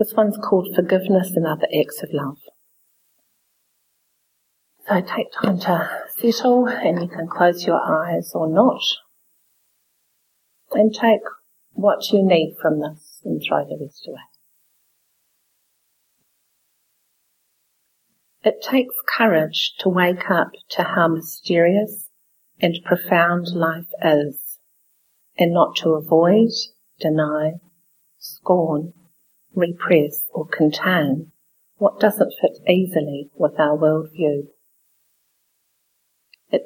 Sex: female